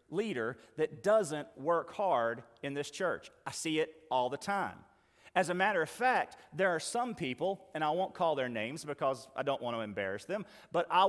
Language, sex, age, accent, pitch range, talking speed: English, male, 40-59, American, 155-210 Hz, 205 wpm